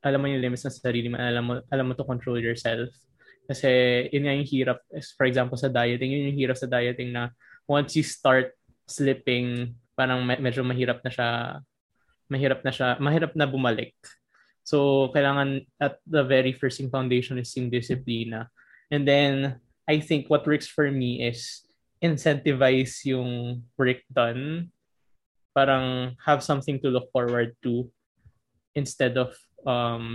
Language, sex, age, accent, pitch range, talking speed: Filipino, male, 20-39, native, 120-140 Hz, 155 wpm